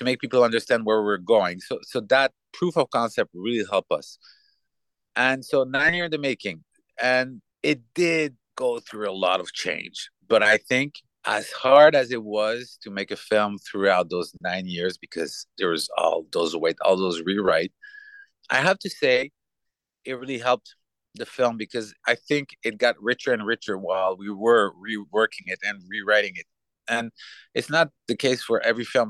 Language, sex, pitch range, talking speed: English, male, 110-175 Hz, 185 wpm